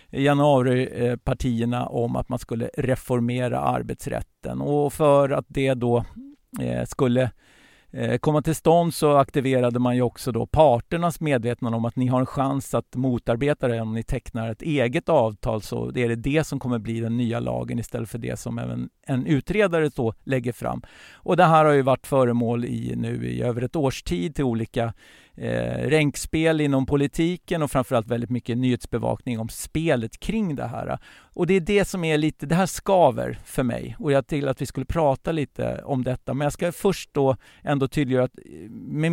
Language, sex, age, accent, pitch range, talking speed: English, male, 50-69, Swedish, 120-150 Hz, 190 wpm